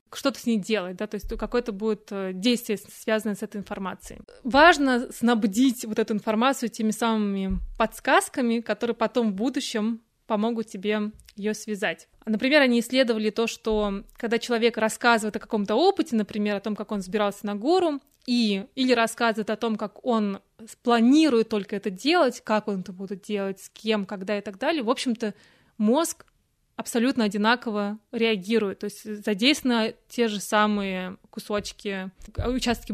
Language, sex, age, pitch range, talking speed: Russian, female, 20-39, 210-245 Hz, 155 wpm